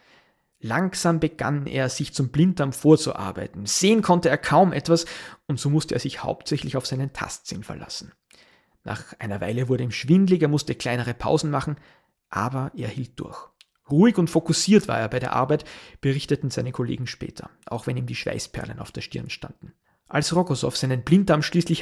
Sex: male